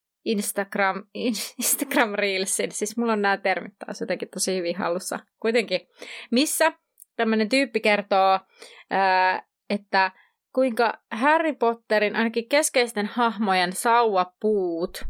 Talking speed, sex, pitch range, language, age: 105 wpm, female, 190-235 Hz, Finnish, 30-49